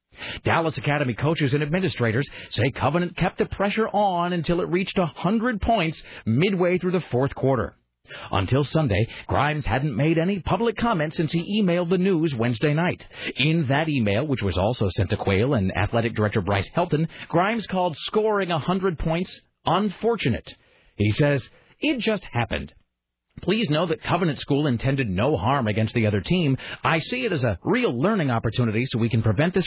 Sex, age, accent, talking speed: male, 40-59, American, 175 wpm